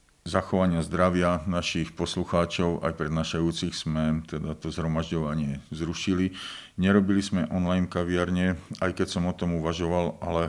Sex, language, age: male, Slovak, 50-69